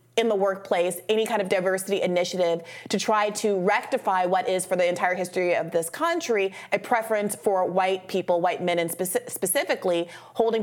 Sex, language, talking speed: female, English, 175 wpm